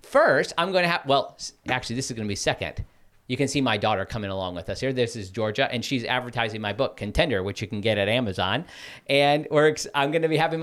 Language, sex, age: English, male, 40-59